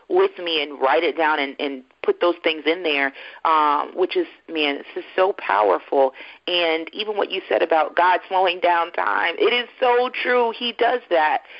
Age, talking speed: 40-59, 195 wpm